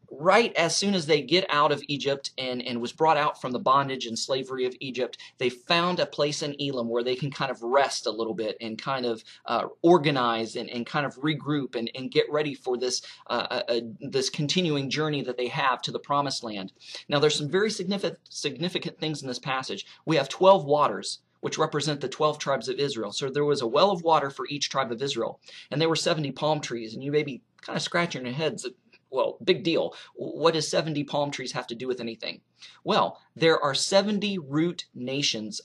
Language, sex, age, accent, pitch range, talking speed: English, male, 30-49, American, 125-165 Hz, 220 wpm